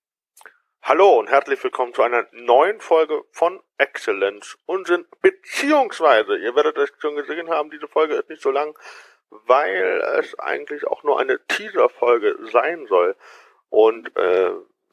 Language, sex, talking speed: German, male, 140 wpm